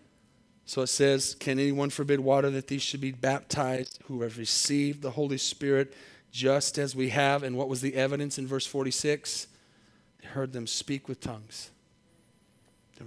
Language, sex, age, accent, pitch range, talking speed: English, male, 40-59, American, 130-155 Hz, 170 wpm